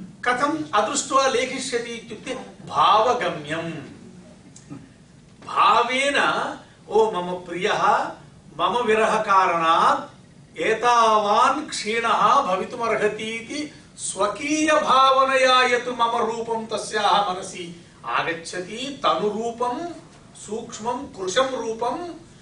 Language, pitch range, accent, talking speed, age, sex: English, 195-260 Hz, Indian, 70 wpm, 60-79, male